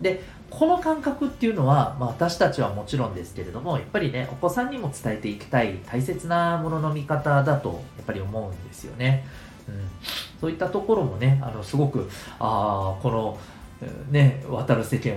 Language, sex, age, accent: Japanese, male, 40-59, native